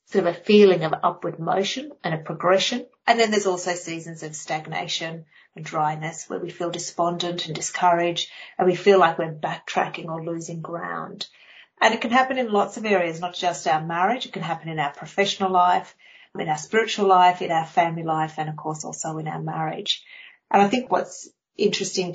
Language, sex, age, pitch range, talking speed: English, female, 40-59, 170-195 Hz, 200 wpm